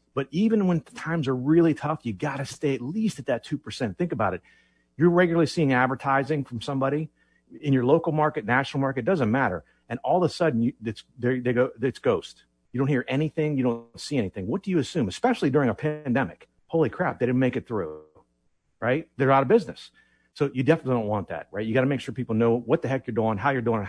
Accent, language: American, English